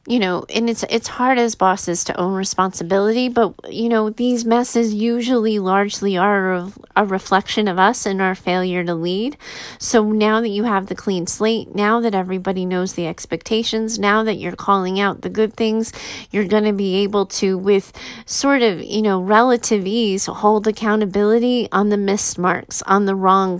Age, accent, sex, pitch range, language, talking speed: 30-49, American, female, 185-225 Hz, English, 185 wpm